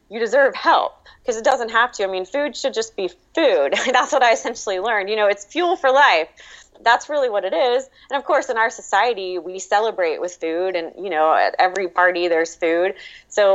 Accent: American